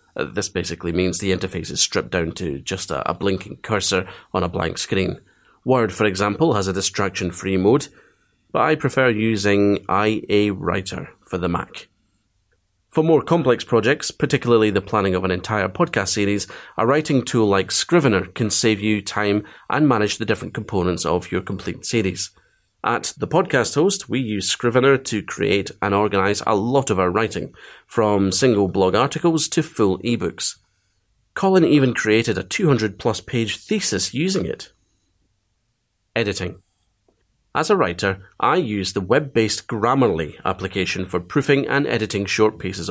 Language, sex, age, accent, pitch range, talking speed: English, male, 30-49, British, 95-120 Hz, 160 wpm